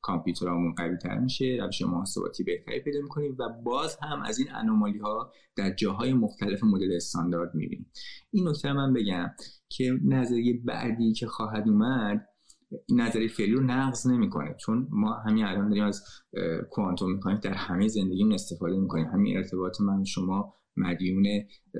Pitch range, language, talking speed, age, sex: 95-130 Hz, Persian, 150 wpm, 20-39, male